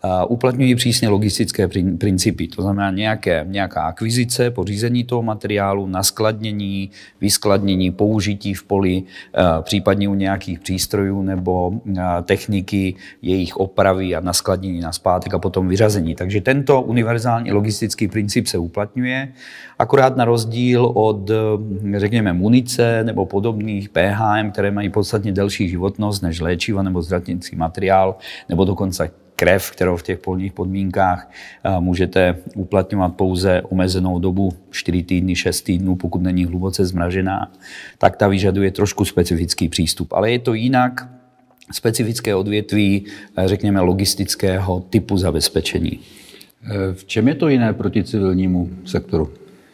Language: Czech